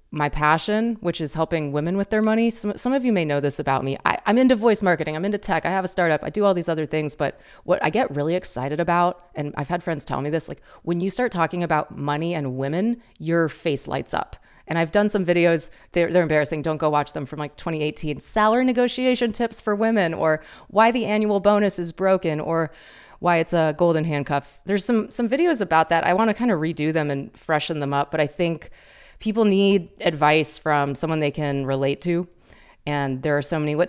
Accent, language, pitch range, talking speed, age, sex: American, English, 155-200 Hz, 230 wpm, 30-49, female